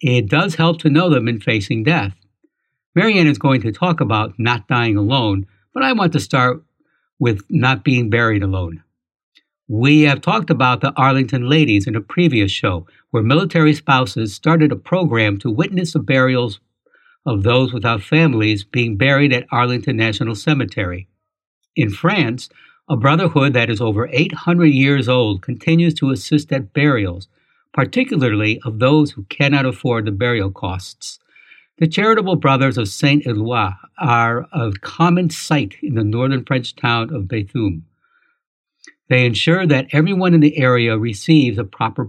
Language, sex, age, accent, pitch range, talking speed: English, male, 60-79, American, 110-155 Hz, 155 wpm